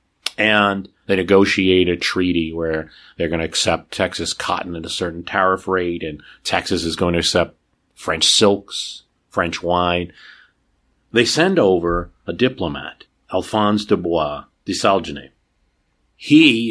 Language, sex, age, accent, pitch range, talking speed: English, male, 40-59, American, 90-110 Hz, 135 wpm